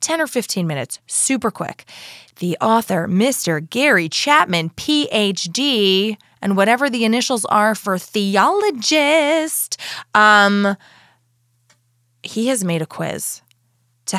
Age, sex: 20-39, female